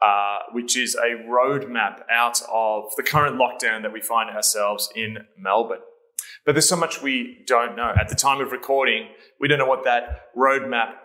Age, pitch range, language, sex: 20-39, 120-145 Hz, English, male